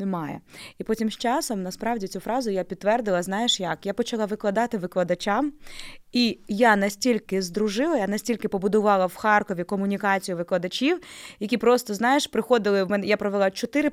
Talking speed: 145 wpm